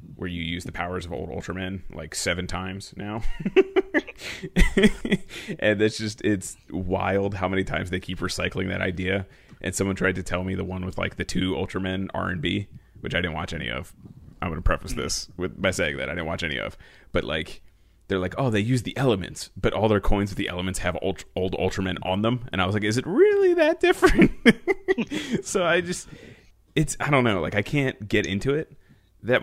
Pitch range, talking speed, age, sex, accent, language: 90-110 Hz, 215 wpm, 30-49, male, American, English